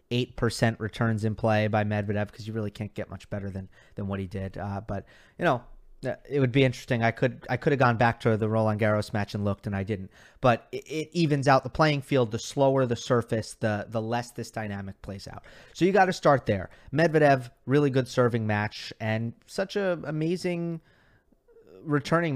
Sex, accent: male, American